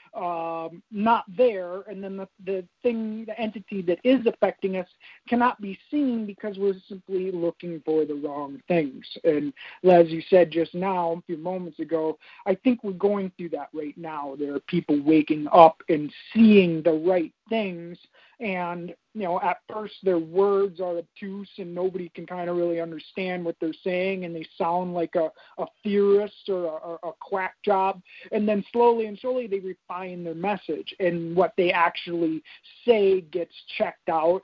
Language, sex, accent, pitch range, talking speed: English, male, American, 165-200 Hz, 175 wpm